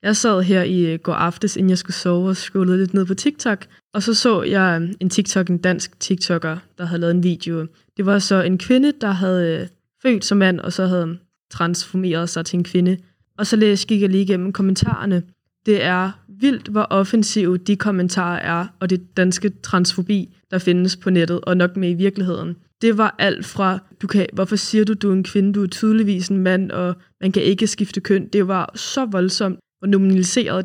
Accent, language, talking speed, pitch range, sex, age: native, Danish, 210 wpm, 180-200 Hz, female, 20-39